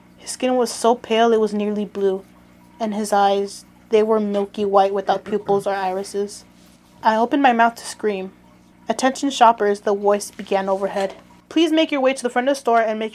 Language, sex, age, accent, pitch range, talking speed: English, female, 20-39, American, 200-235 Hz, 200 wpm